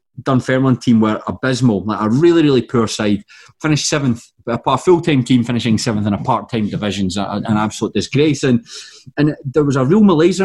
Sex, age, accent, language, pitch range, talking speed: male, 30-49, British, English, 120-155 Hz, 180 wpm